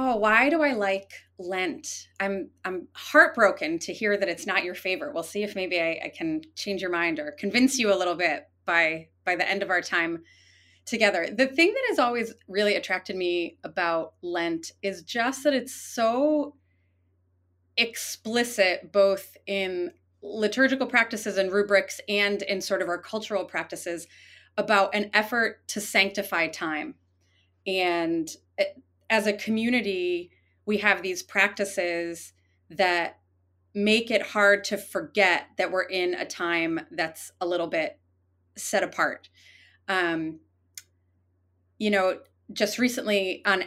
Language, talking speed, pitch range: English, 145 wpm, 170-215 Hz